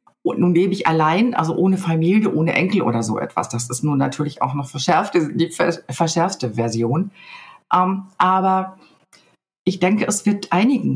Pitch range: 160-195 Hz